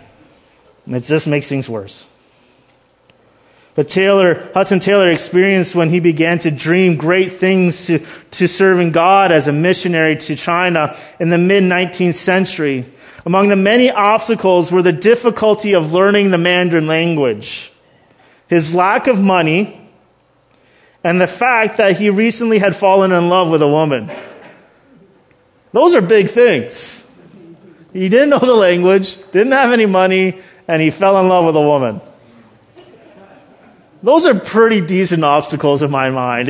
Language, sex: English, male